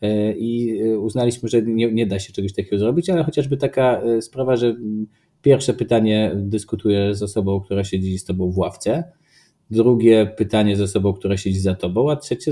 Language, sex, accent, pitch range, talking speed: Polish, male, native, 100-120 Hz, 175 wpm